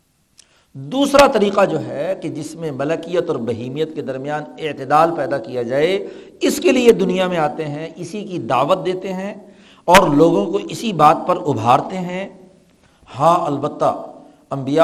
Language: Urdu